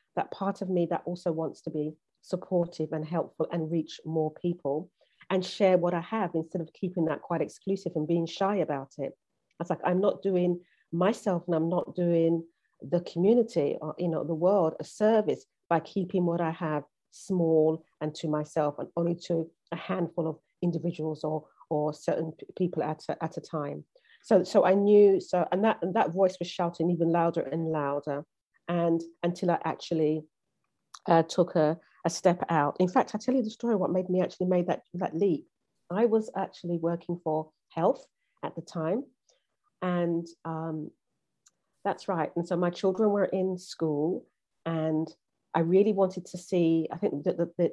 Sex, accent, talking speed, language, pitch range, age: female, British, 185 wpm, English, 160-185 Hz, 40-59